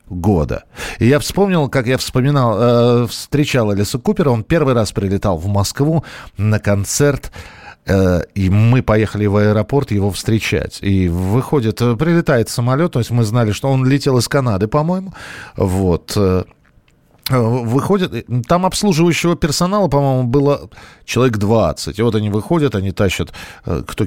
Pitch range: 100-135 Hz